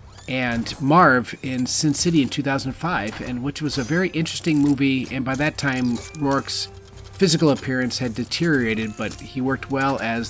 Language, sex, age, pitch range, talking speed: English, male, 40-59, 105-135 Hz, 165 wpm